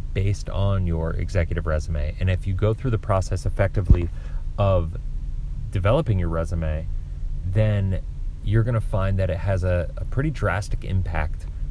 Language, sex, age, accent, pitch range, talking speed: English, male, 30-49, American, 80-100 Hz, 155 wpm